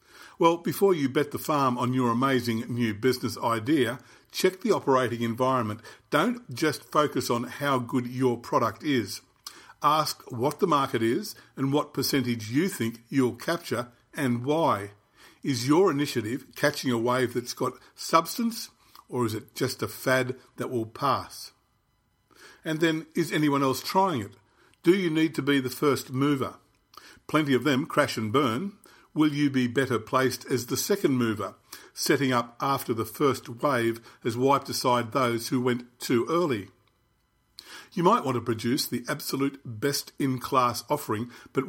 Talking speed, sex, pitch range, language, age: 160 wpm, male, 120-145 Hz, English, 50-69